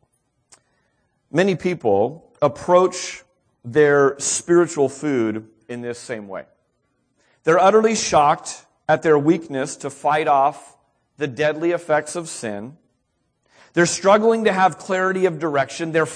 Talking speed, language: 120 wpm, English